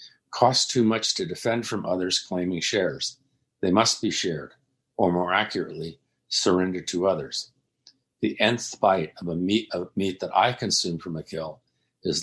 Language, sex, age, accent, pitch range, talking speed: English, male, 50-69, American, 90-105 Hz, 160 wpm